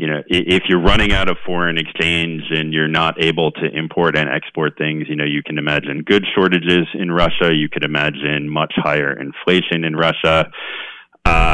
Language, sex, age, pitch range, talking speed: English, male, 40-59, 75-90 Hz, 185 wpm